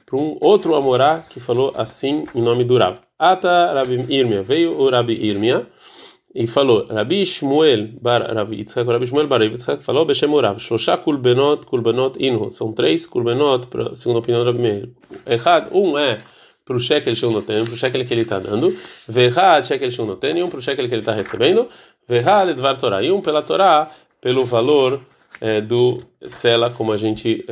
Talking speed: 195 wpm